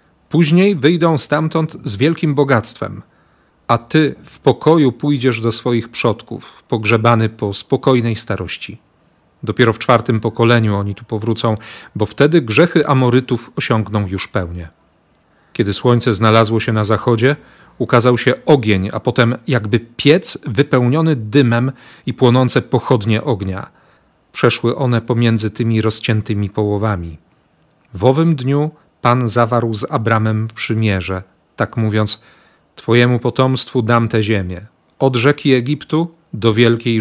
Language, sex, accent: Polish, male, native